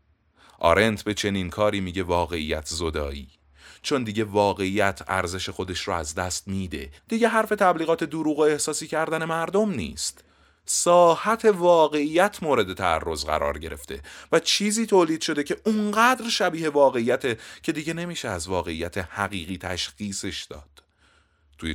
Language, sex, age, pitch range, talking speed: Persian, male, 30-49, 80-130 Hz, 130 wpm